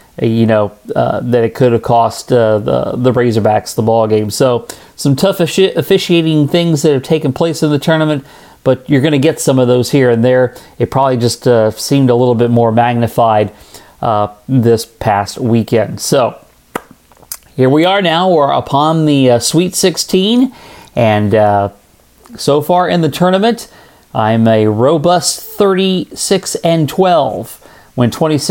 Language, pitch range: English, 120-155 Hz